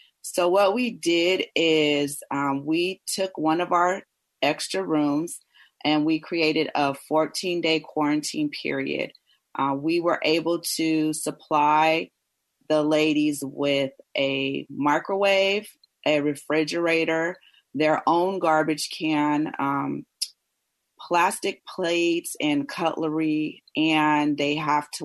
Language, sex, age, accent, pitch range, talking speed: English, female, 30-49, American, 145-170 Hz, 110 wpm